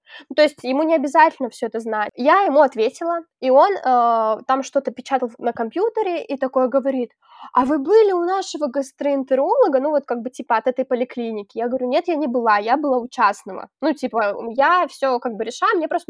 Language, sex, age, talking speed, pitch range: Russian, female, 10-29, 205 wpm, 250-315 Hz